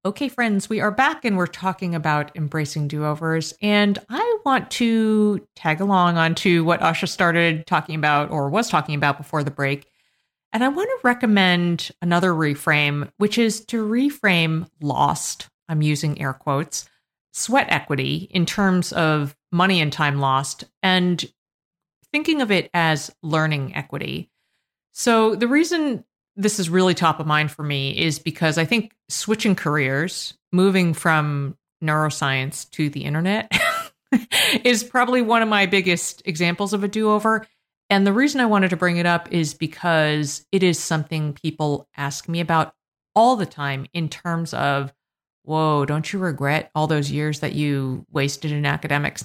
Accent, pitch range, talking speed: American, 150-200 Hz, 160 wpm